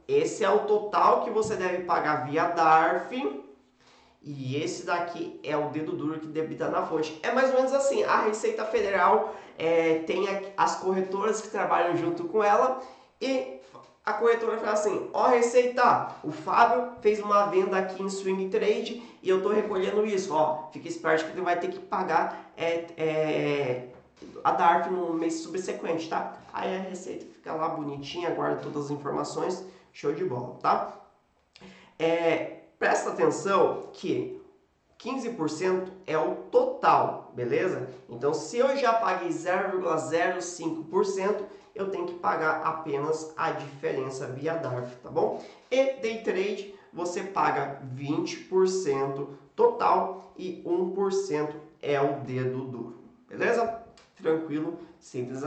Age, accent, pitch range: 20-39, Brazilian, 155-215 Hz